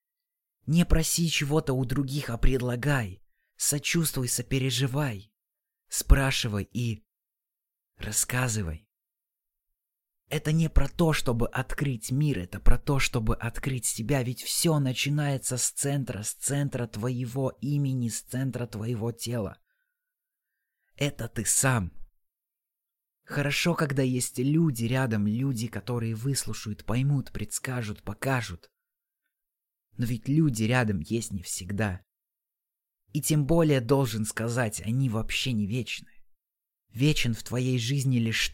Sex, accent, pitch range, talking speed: male, native, 115-145 Hz, 115 wpm